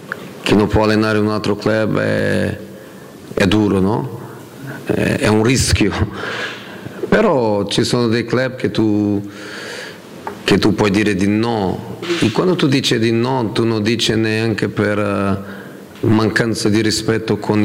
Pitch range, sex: 100-110 Hz, male